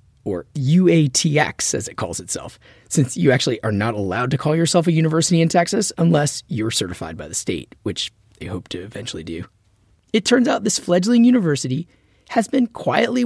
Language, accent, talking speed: English, American, 180 wpm